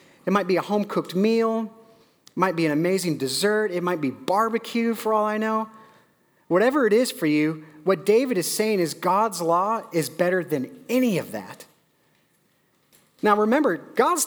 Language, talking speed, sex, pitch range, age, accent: English, 175 wpm, male, 160-220 Hz, 40-59, American